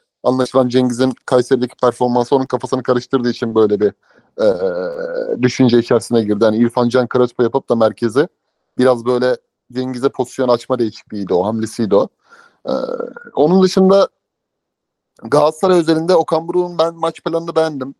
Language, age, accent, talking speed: Turkish, 30-49, native, 135 wpm